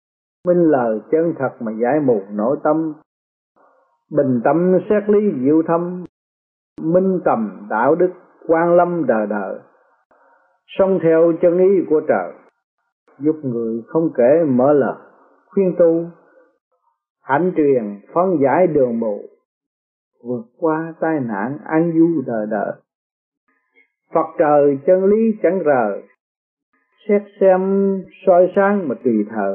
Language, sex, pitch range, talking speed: Vietnamese, male, 130-195 Hz, 130 wpm